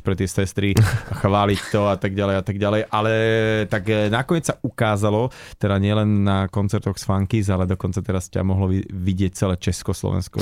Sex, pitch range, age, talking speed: male, 100-120 Hz, 30-49, 175 wpm